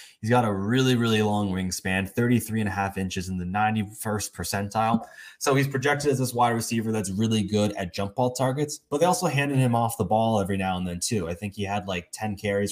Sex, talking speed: male, 235 wpm